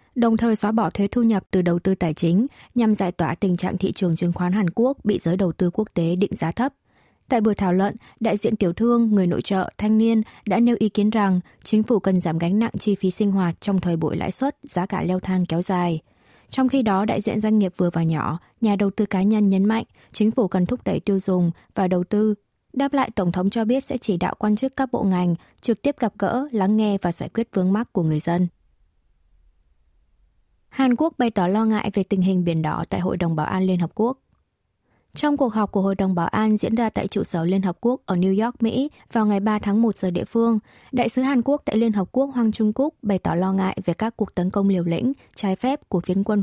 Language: Vietnamese